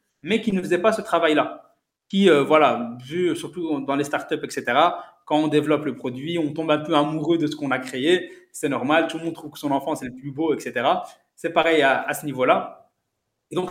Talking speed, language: 230 wpm, French